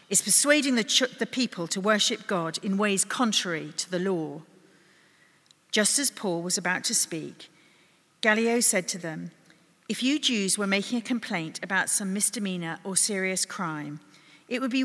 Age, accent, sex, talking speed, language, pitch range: 40-59, British, female, 170 wpm, English, 170-225 Hz